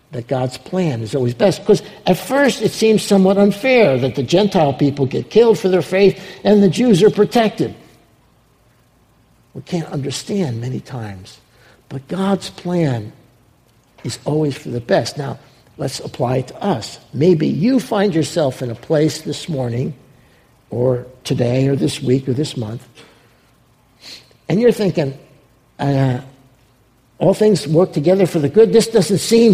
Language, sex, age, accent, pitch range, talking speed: English, male, 60-79, American, 125-200 Hz, 155 wpm